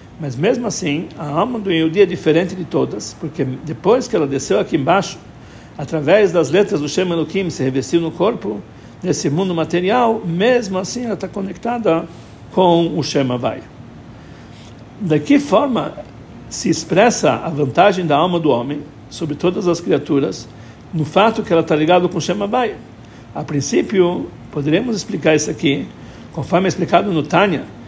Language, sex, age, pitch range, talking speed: Portuguese, male, 60-79, 145-190 Hz, 165 wpm